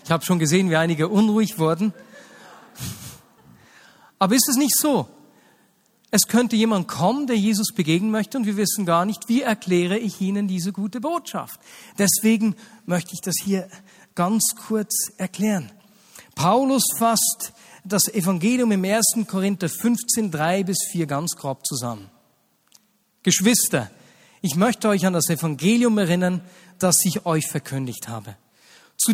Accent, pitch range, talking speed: German, 160-220 Hz, 140 wpm